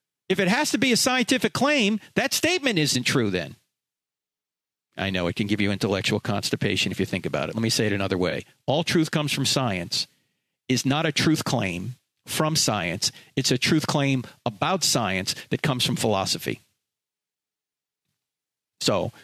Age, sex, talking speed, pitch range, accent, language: 40-59, male, 170 wpm, 120-165 Hz, American, English